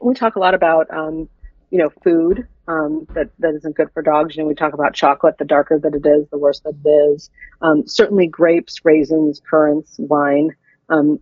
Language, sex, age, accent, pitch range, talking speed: English, female, 40-59, American, 150-180 Hz, 210 wpm